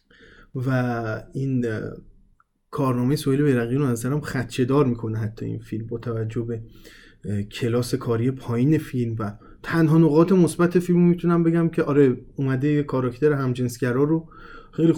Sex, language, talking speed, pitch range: male, Persian, 135 wpm, 120-160 Hz